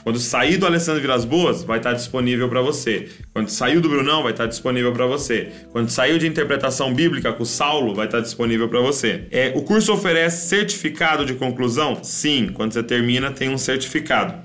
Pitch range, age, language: 125-160 Hz, 20-39, Portuguese